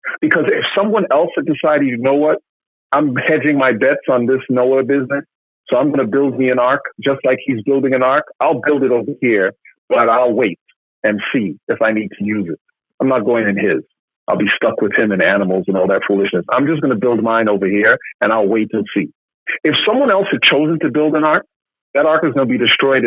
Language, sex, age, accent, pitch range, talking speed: English, male, 50-69, American, 125-155 Hz, 240 wpm